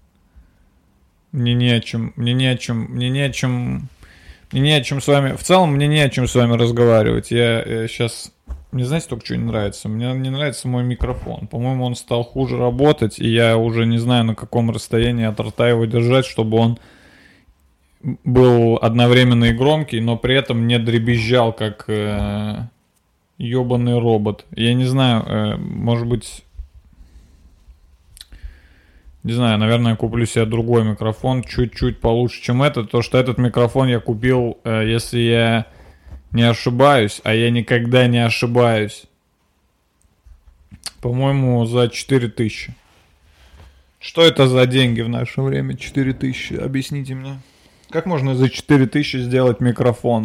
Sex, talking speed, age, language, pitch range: male, 150 wpm, 20-39, Russian, 105-125 Hz